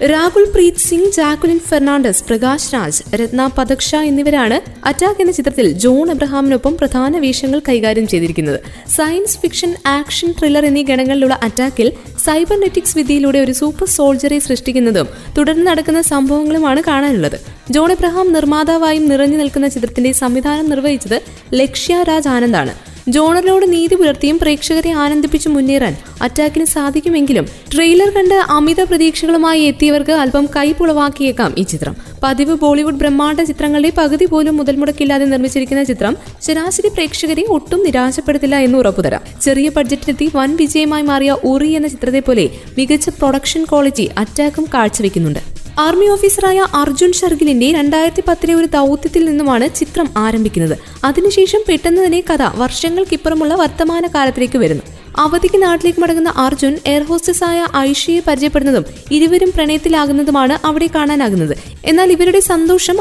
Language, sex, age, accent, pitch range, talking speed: Malayalam, female, 20-39, native, 270-330 Hz, 120 wpm